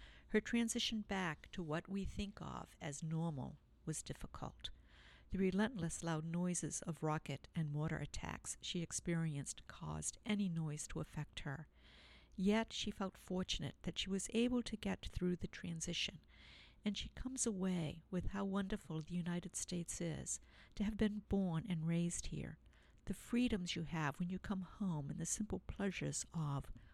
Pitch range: 155-195 Hz